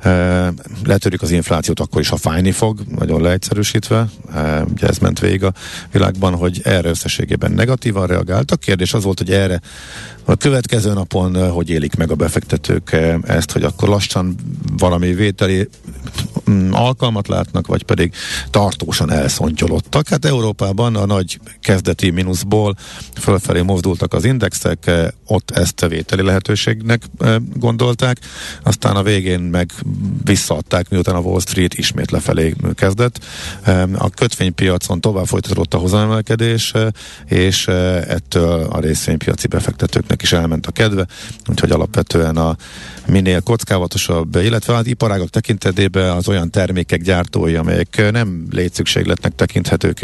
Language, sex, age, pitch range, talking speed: Hungarian, male, 50-69, 85-110 Hz, 130 wpm